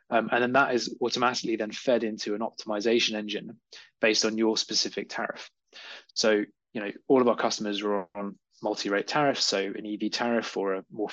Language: English